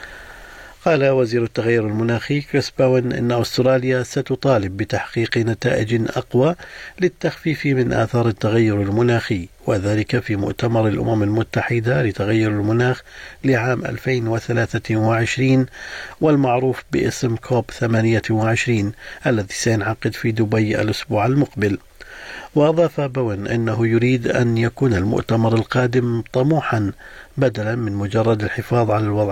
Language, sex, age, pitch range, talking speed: Arabic, male, 50-69, 110-130 Hz, 105 wpm